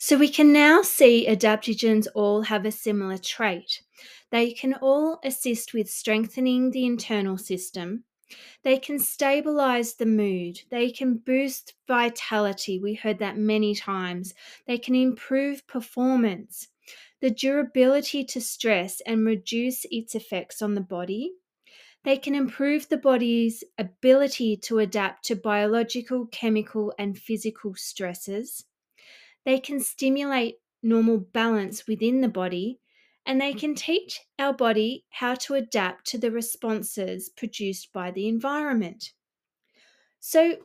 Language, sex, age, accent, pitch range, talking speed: English, female, 20-39, Australian, 210-265 Hz, 130 wpm